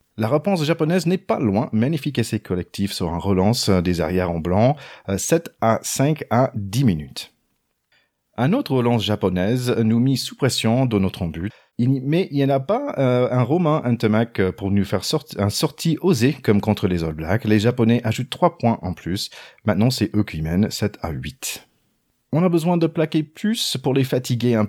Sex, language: male, French